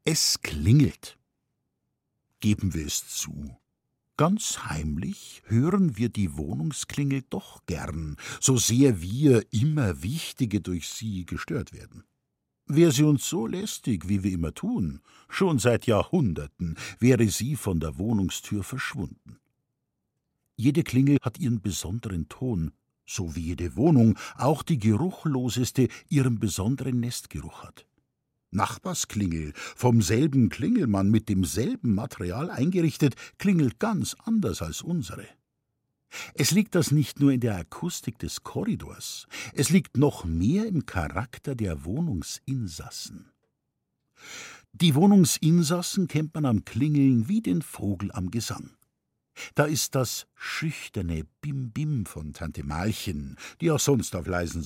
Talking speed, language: 125 wpm, German